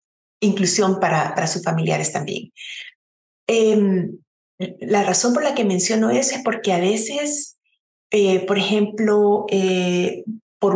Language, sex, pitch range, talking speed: Spanish, female, 190-265 Hz, 130 wpm